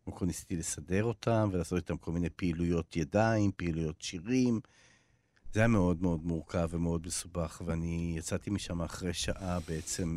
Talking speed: 160 wpm